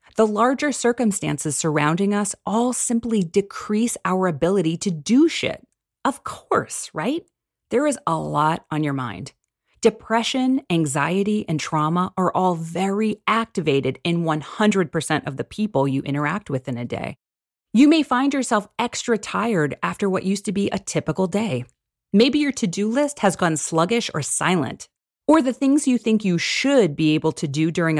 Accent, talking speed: American, 165 wpm